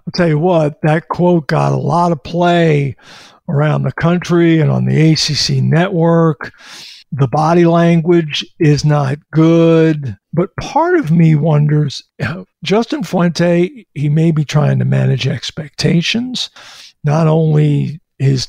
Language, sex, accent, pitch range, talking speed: English, male, American, 150-175 Hz, 135 wpm